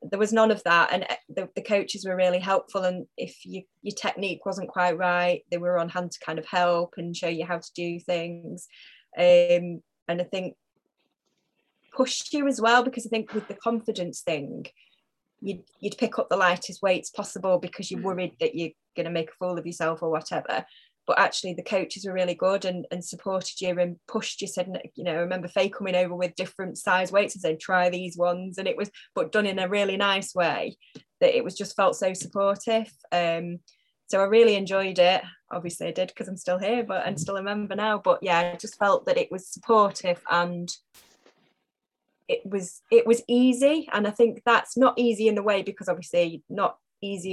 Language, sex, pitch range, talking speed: English, female, 175-210 Hz, 210 wpm